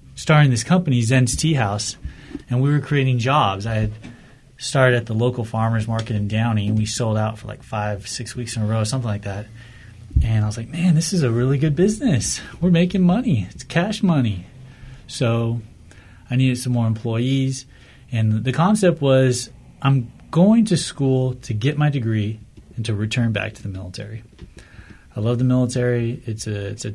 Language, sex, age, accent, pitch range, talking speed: English, male, 30-49, American, 110-135 Hz, 190 wpm